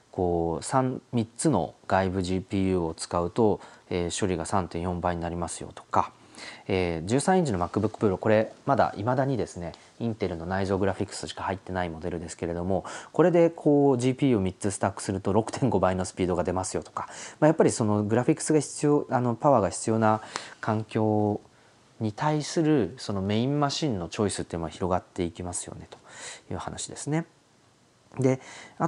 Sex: male